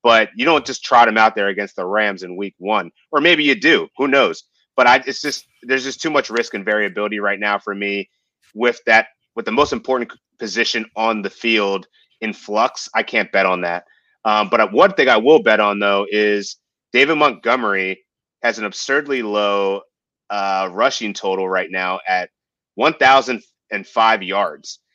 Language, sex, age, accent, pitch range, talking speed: English, male, 30-49, American, 100-115 Hz, 185 wpm